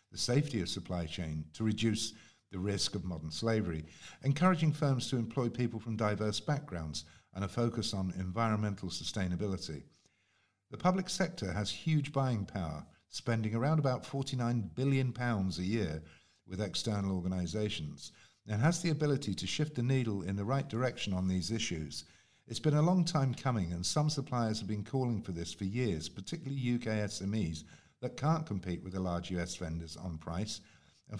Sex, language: male, English